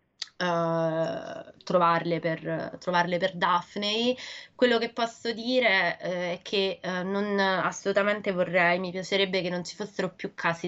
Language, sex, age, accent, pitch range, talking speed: Italian, female, 20-39, native, 180-220 Hz, 125 wpm